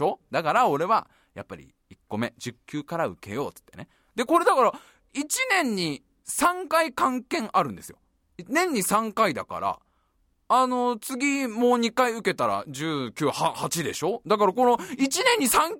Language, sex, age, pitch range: Japanese, male, 20-39, 185-285 Hz